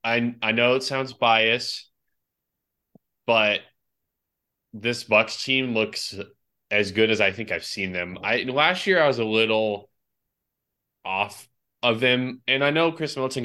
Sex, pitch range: male, 100-120 Hz